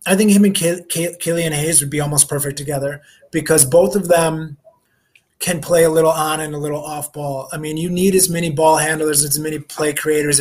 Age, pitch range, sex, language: 20-39, 150-165 Hz, male, English